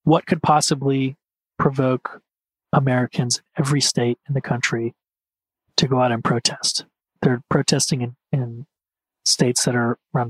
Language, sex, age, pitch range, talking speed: English, male, 30-49, 125-150 Hz, 135 wpm